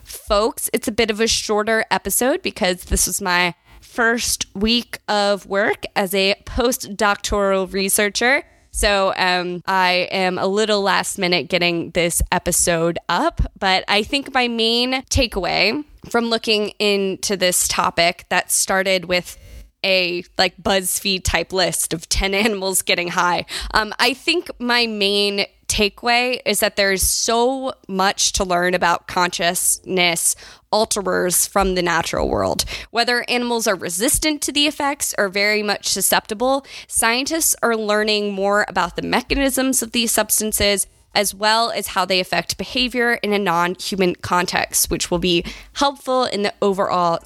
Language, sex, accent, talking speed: English, female, American, 145 wpm